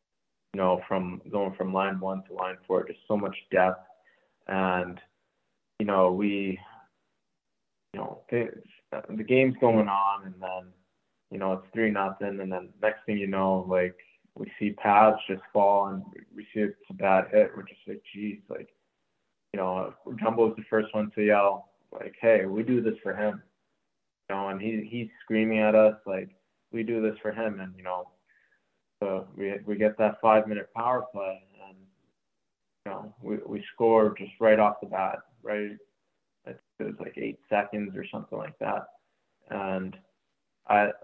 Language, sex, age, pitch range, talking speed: English, male, 20-39, 95-110 Hz, 175 wpm